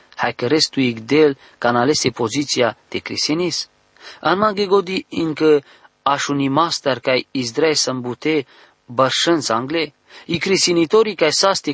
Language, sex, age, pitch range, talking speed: English, male, 40-59, 140-175 Hz, 145 wpm